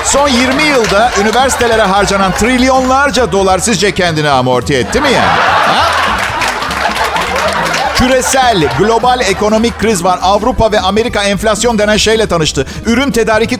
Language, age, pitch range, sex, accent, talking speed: Turkish, 50-69, 155-235 Hz, male, native, 125 wpm